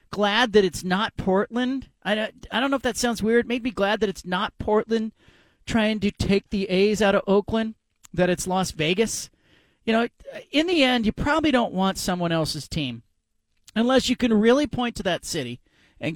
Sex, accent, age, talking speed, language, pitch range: male, American, 40-59, 195 wpm, English, 170-215 Hz